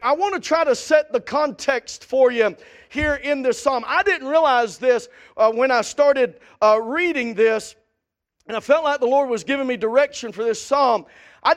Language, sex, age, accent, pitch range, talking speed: English, male, 40-59, American, 245-310 Hz, 200 wpm